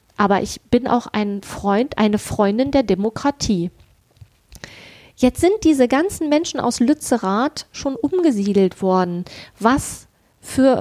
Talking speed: 120 wpm